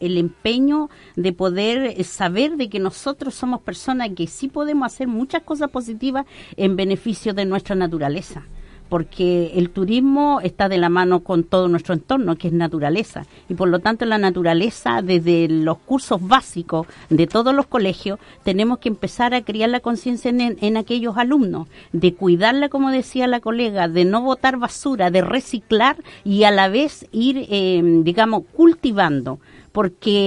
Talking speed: 165 wpm